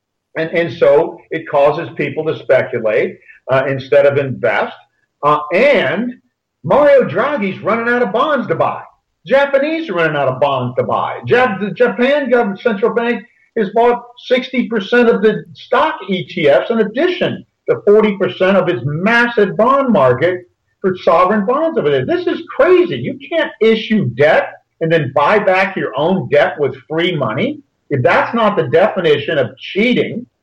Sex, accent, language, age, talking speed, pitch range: male, American, English, 50-69, 160 wpm, 160-240 Hz